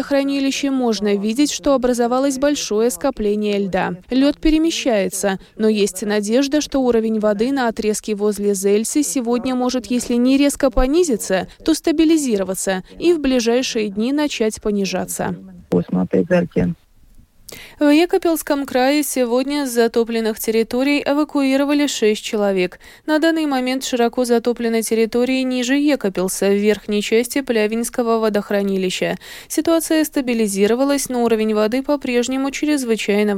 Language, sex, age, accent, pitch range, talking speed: Russian, female, 20-39, native, 205-275 Hz, 115 wpm